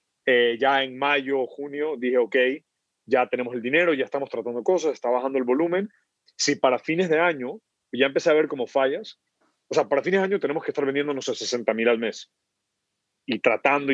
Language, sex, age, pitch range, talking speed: Spanish, male, 30-49, 125-150 Hz, 210 wpm